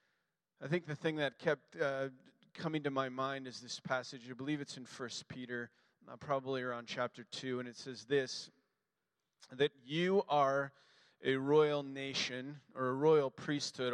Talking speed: 165 wpm